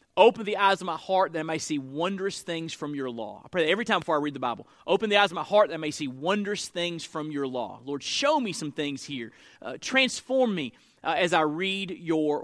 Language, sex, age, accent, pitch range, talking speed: English, male, 30-49, American, 145-200 Hz, 260 wpm